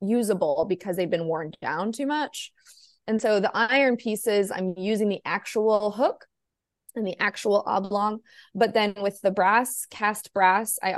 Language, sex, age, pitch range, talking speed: English, female, 20-39, 180-215 Hz, 165 wpm